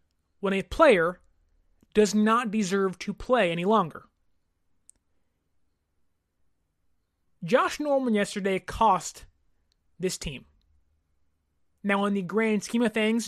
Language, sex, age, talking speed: English, male, 20-39, 105 wpm